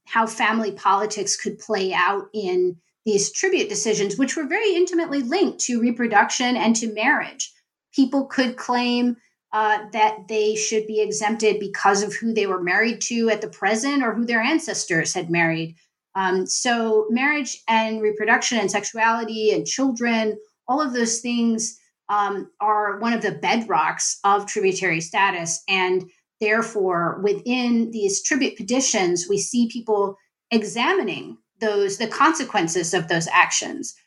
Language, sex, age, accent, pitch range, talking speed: English, female, 30-49, American, 200-245 Hz, 145 wpm